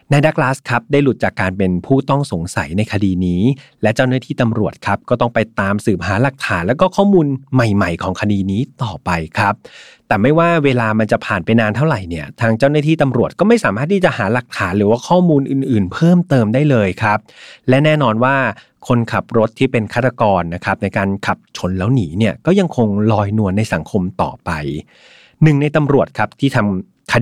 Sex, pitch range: male, 105-140 Hz